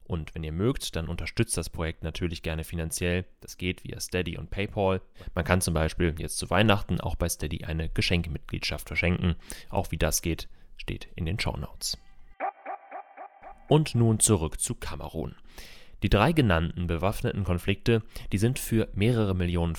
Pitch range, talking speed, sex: 85-110 Hz, 160 wpm, male